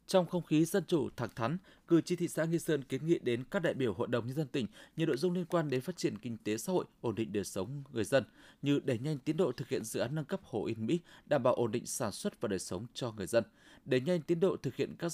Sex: male